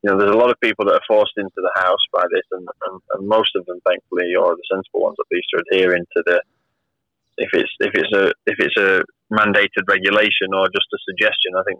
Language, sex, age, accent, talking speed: English, male, 20-39, British, 245 wpm